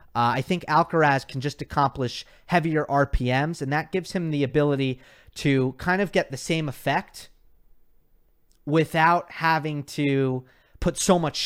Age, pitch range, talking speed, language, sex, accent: 30-49, 120-155 Hz, 145 wpm, English, male, American